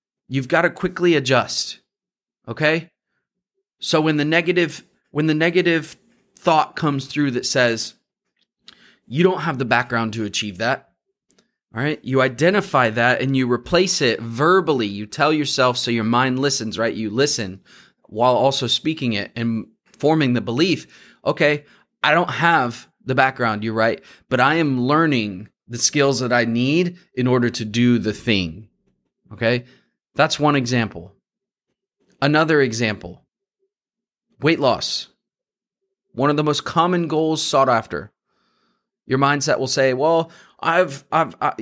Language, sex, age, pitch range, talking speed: English, male, 30-49, 120-160 Hz, 145 wpm